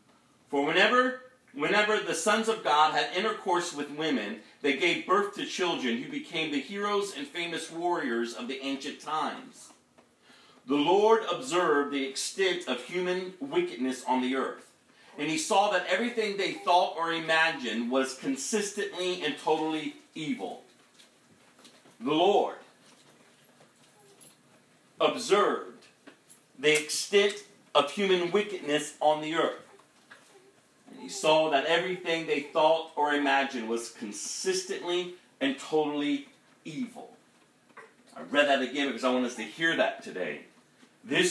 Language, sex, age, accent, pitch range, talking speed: English, male, 40-59, American, 140-200 Hz, 130 wpm